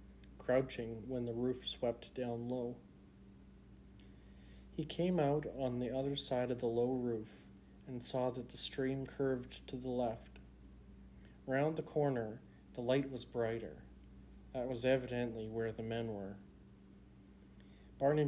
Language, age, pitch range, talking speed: English, 40-59, 105-130 Hz, 140 wpm